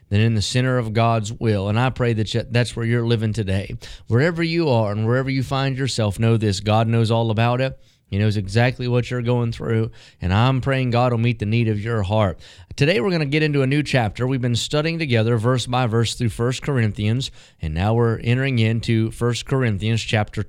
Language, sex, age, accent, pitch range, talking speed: English, male, 30-49, American, 110-135 Hz, 220 wpm